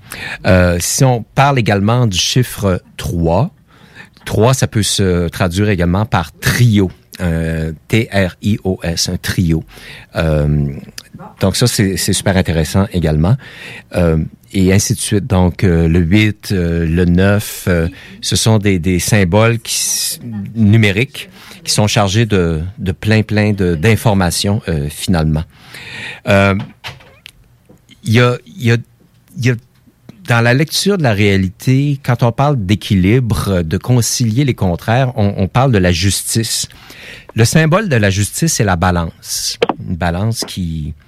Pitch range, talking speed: 90-120 Hz, 145 wpm